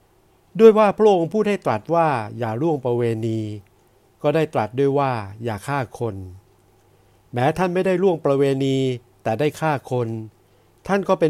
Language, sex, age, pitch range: Thai, male, 60-79, 110-150 Hz